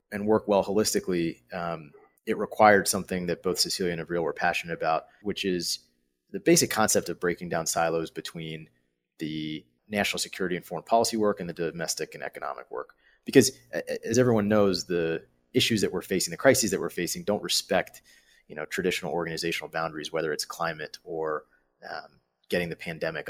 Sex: male